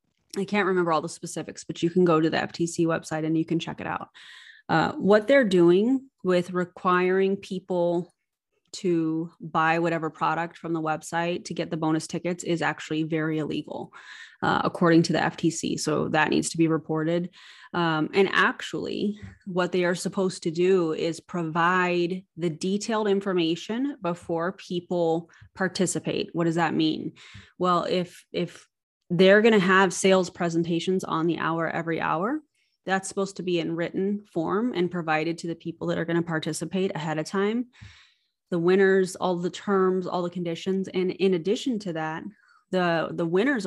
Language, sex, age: English, female, 20-39